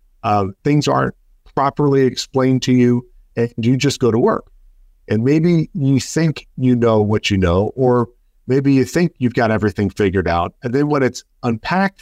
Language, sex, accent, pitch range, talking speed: English, male, American, 100-130 Hz, 180 wpm